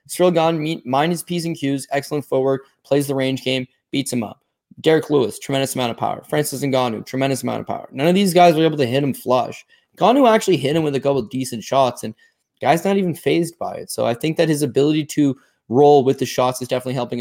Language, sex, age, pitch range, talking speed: English, male, 20-39, 125-150 Hz, 240 wpm